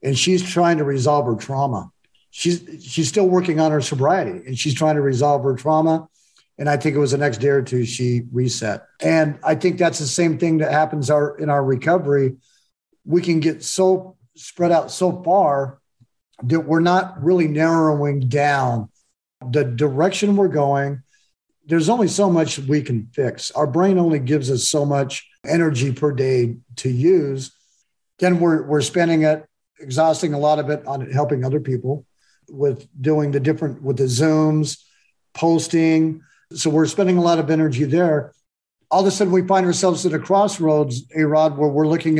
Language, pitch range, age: English, 140-165 Hz, 50-69